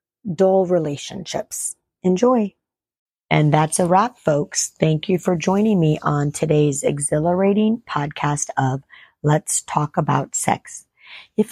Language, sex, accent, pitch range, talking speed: English, female, American, 155-200 Hz, 120 wpm